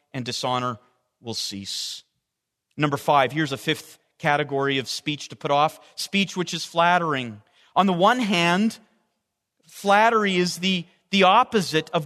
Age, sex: 40-59, male